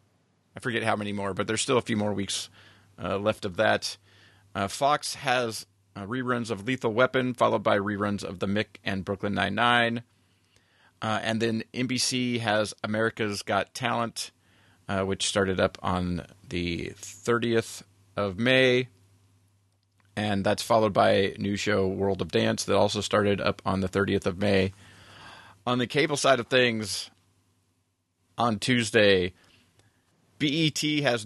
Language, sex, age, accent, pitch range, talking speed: English, male, 30-49, American, 100-120 Hz, 150 wpm